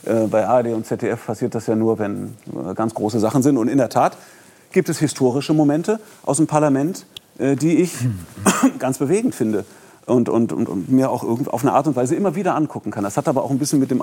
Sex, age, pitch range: male, 40-59, 110-135 Hz